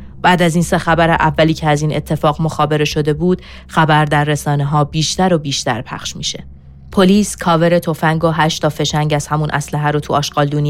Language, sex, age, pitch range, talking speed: Persian, female, 30-49, 140-160 Hz, 190 wpm